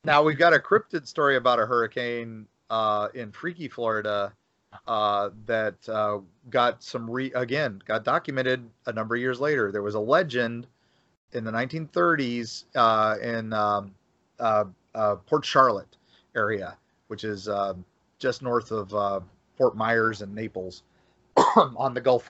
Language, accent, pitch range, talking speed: English, American, 110-140 Hz, 155 wpm